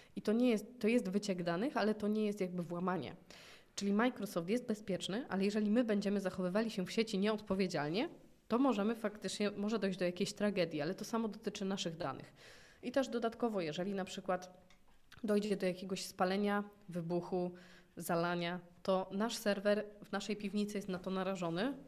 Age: 20-39